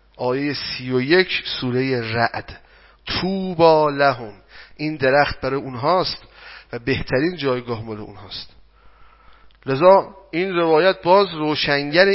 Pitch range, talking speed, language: 135-190 Hz, 110 wpm, Persian